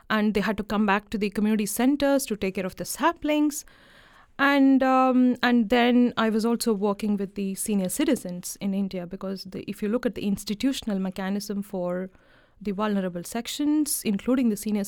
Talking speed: 185 wpm